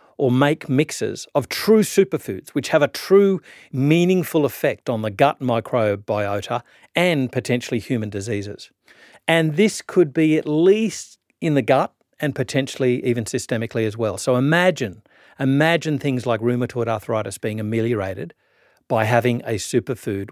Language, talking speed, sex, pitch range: English, 140 wpm, male, 115-155 Hz